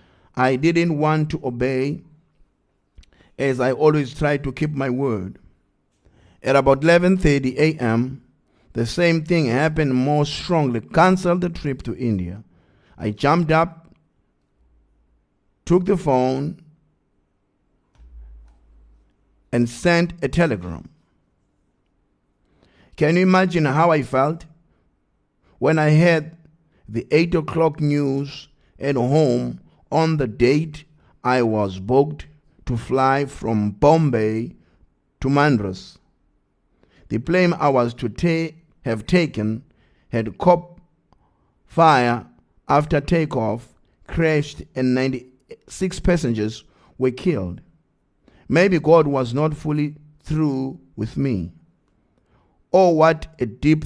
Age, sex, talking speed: 50-69, male, 105 wpm